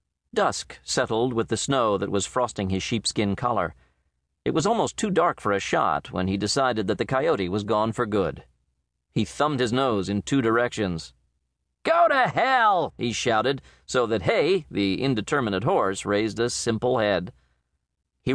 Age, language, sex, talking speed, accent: 40-59, English, male, 170 wpm, American